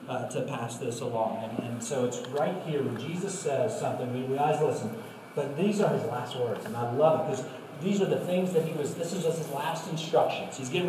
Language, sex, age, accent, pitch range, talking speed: English, male, 40-59, American, 125-160 Hz, 240 wpm